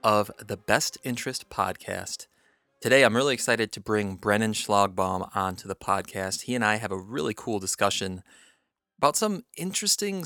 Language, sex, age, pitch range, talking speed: English, male, 30-49, 100-125 Hz, 160 wpm